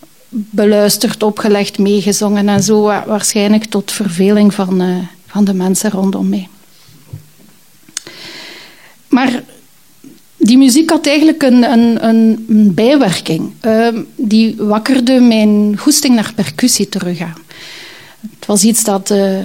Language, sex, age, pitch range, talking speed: Dutch, female, 40-59, 200-240 Hz, 110 wpm